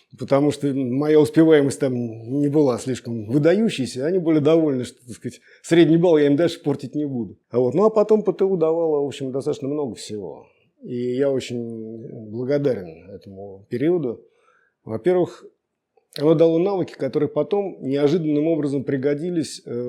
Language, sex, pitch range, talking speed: Russian, male, 120-155 Hz, 140 wpm